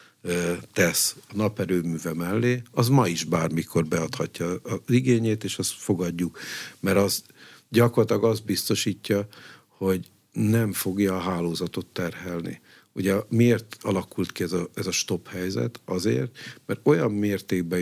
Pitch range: 85-110 Hz